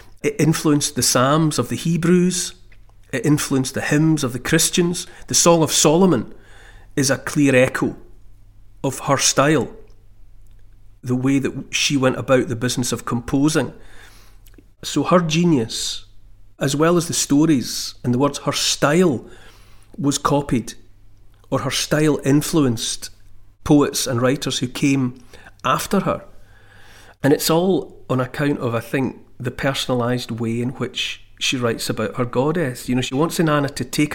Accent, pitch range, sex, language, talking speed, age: British, 105-145 Hz, male, English, 150 wpm, 40-59